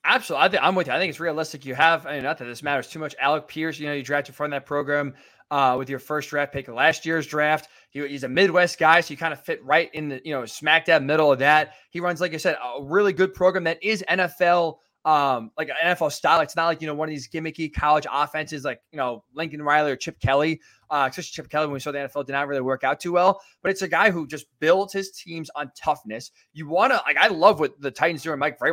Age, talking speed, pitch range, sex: 20-39, 275 wpm, 145-185 Hz, male